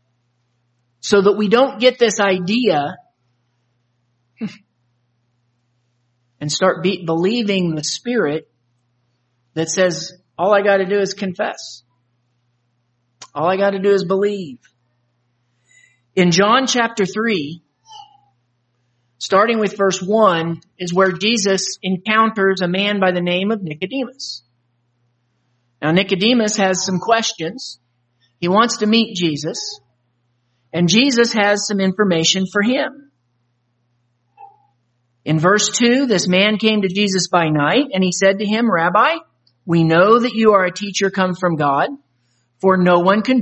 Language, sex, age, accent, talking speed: English, male, 50-69, American, 130 wpm